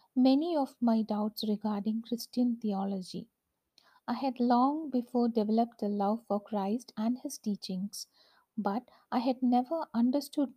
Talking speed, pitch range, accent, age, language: 135 wpm, 215-260 Hz, Indian, 50-69, English